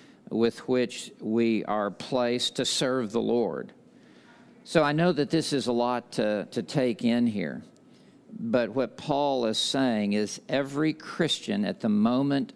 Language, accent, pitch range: English, American, 115-150 Hz